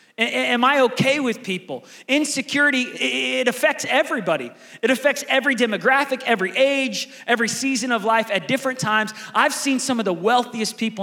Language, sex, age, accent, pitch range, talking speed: English, male, 30-49, American, 185-240 Hz, 160 wpm